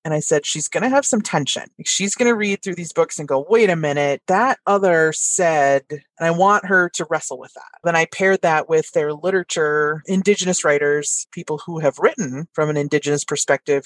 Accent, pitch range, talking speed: American, 145-190 Hz, 210 wpm